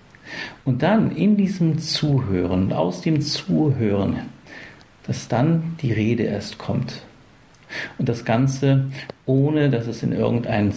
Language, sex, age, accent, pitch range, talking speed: German, male, 50-69, German, 110-135 Hz, 125 wpm